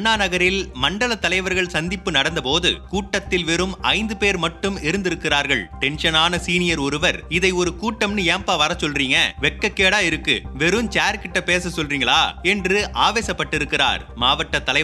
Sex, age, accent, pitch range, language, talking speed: male, 30-49, native, 160-195 Hz, Tamil, 55 wpm